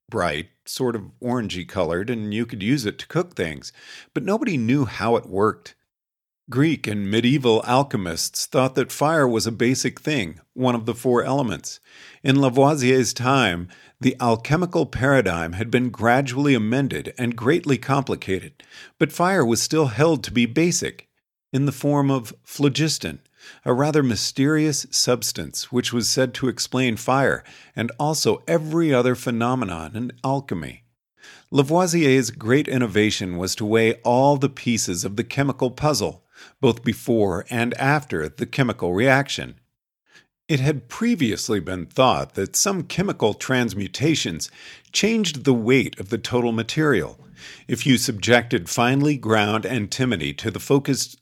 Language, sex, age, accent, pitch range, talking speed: English, male, 50-69, American, 110-140 Hz, 145 wpm